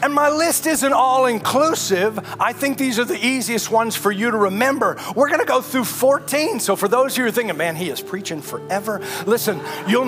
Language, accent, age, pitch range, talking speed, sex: English, American, 40-59, 180-245 Hz, 220 wpm, male